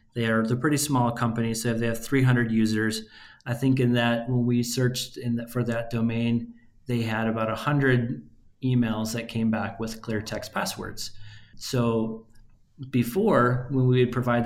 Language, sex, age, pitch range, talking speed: English, male, 30-49, 110-130 Hz, 175 wpm